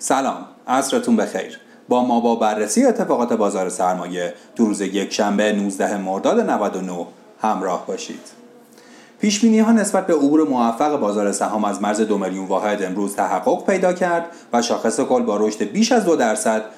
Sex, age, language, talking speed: male, 30-49, Persian, 160 wpm